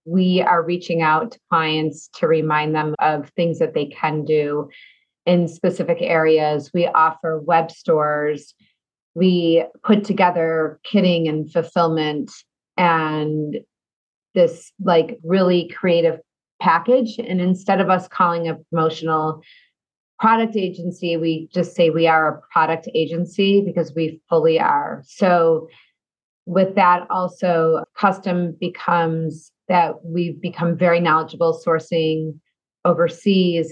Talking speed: 120 wpm